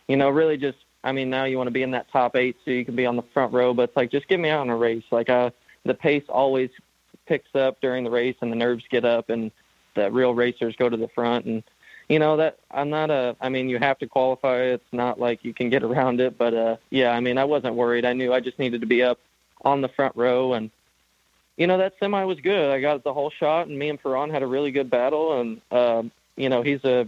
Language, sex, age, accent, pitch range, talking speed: English, male, 20-39, American, 125-140 Hz, 275 wpm